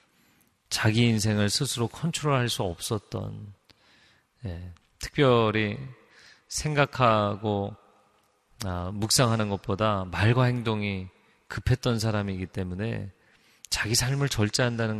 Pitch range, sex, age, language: 105-130 Hz, male, 30-49, Korean